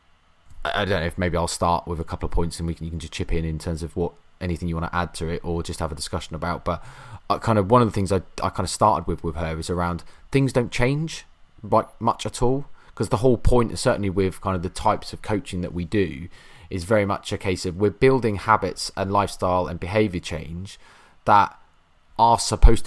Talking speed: 245 wpm